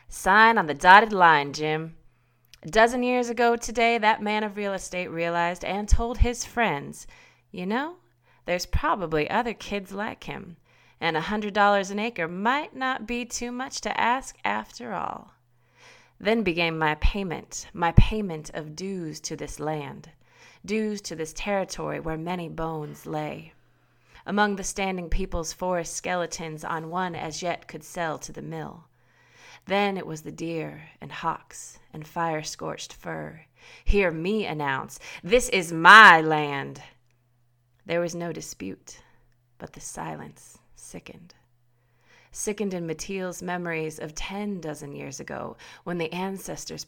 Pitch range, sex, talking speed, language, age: 155-200 Hz, female, 145 wpm, English, 30-49